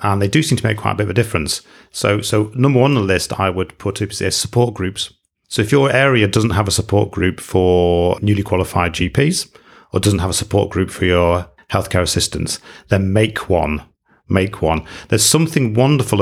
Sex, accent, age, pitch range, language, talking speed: male, British, 40-59, 95-120 Hz, English, 205 wpm